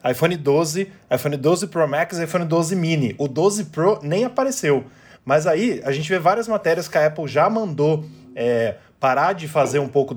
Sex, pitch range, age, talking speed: male, 135-195 Hz, 20-39, 190 wpm